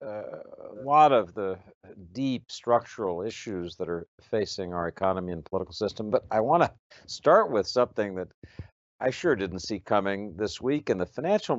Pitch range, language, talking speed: 90-125 Hz, English, 175 wpm